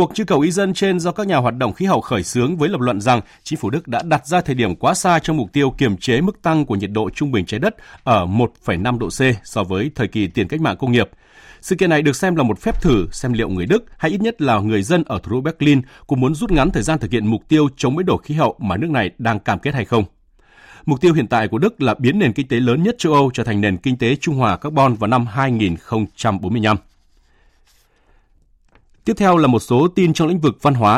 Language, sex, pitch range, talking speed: Vietnamese, male, 110-160 Hz, 270 wpm